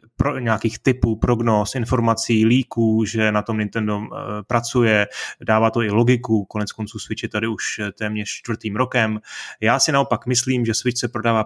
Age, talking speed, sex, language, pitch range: 20-39, 170 wpm, male, Czech, 105-120 Hz